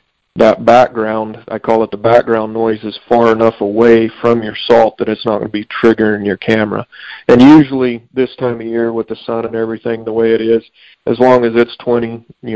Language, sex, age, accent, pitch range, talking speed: English, male, 40-59, American, 110-120 Hz, 215 wpm